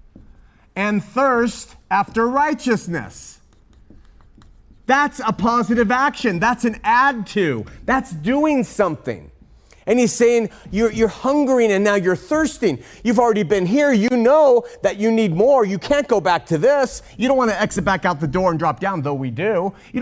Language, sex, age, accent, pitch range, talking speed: English, male, 30-49, American, 155-230 Hz, 170 wpm